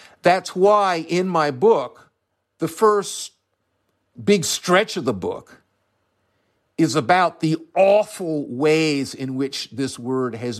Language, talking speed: English, 125 wpm